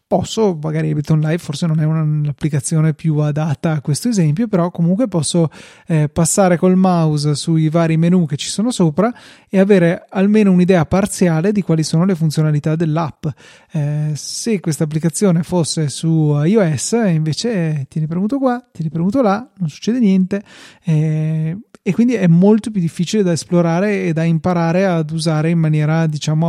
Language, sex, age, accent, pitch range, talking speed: Italian, male, 30-49, native, 160-180 Hz, 165 wpm